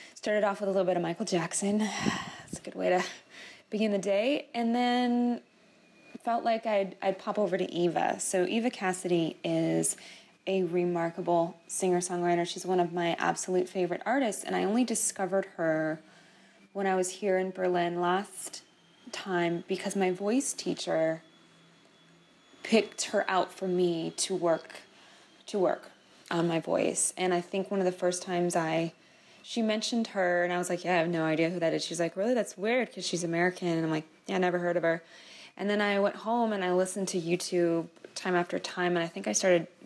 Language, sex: English, female